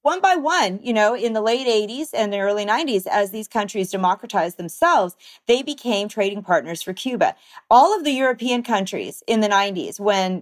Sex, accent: female, American